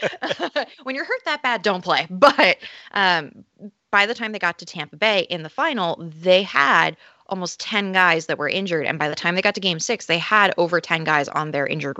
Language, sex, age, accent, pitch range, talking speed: English, female, 20-39, American, 155-200 Hz, 225 wpm